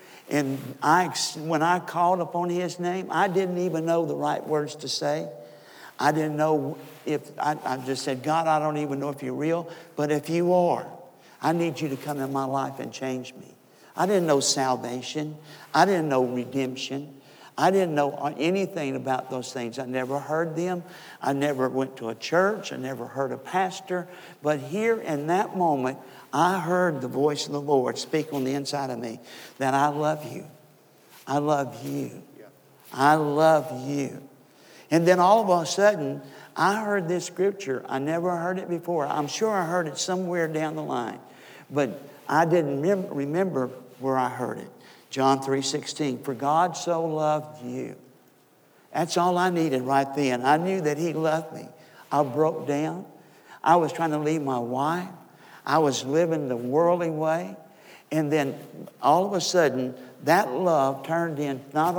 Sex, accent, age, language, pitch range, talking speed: male, American, 60-79, English, 135-170 Hz, 180 wpm